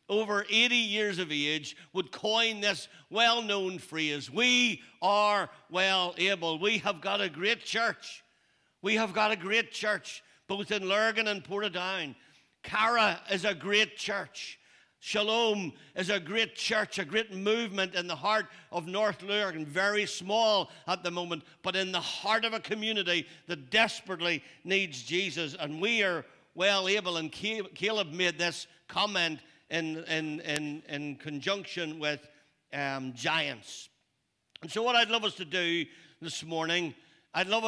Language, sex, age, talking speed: English, male, 60-79, 150 wpm